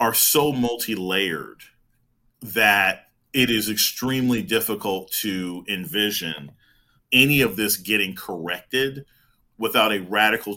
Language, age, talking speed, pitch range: English, 40-59, 100 wpm, 95-115 Hz